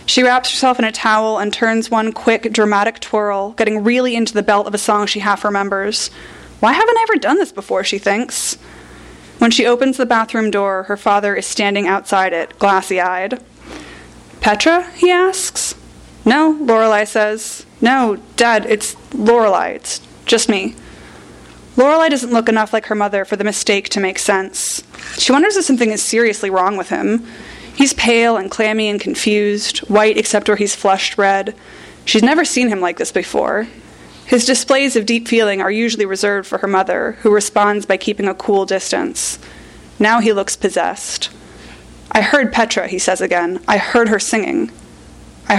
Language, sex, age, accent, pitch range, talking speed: English, female, 20-39, American, 195-235 Hz, 170 wpm